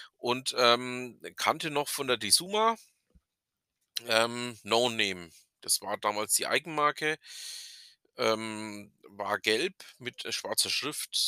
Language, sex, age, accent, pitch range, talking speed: German, male, 40-59, German, 105-150 Hz, 105 wpm